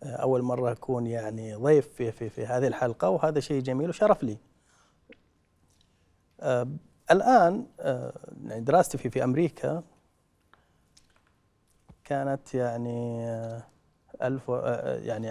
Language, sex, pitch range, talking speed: Arabic, male, 110-140 Hz, 100 wpm